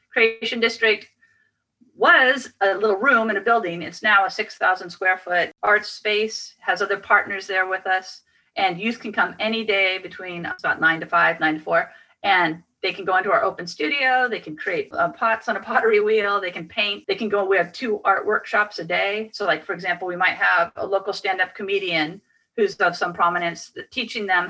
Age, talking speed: 40-59, 205 wpm